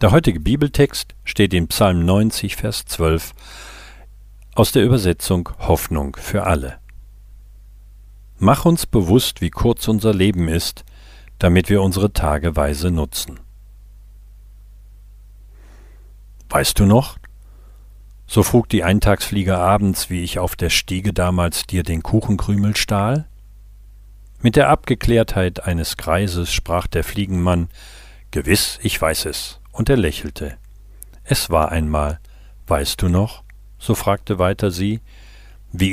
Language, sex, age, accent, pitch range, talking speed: German, male, 50-69, German, 90-110 Hz, 120 wpm